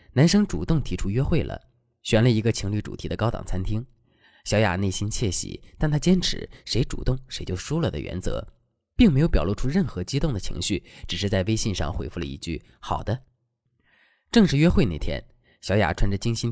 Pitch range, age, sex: 90-135 Hz, 20-39, male